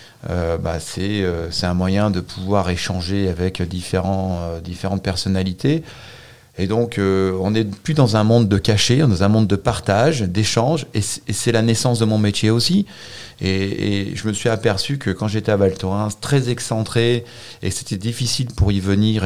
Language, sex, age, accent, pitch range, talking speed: French, male, 30-49, French, 95-115 Hz, 200 wpm